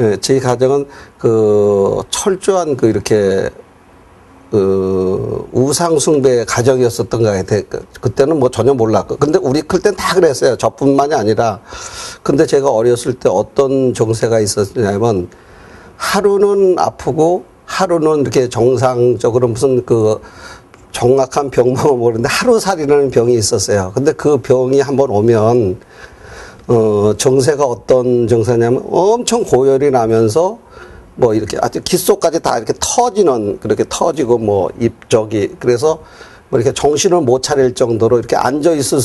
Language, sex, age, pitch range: Korean, male, 50-69, 110-145 Hz